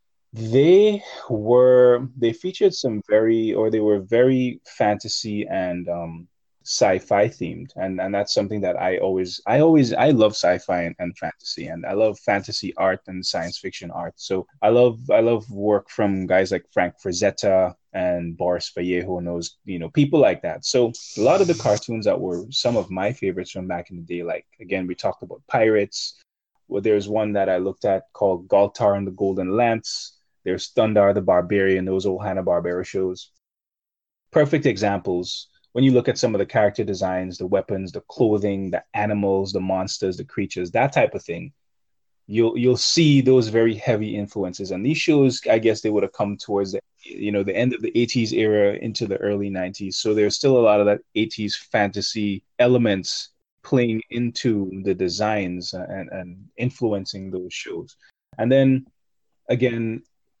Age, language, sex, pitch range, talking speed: 20-39, English, male, 95-115 Hz, 180 wpm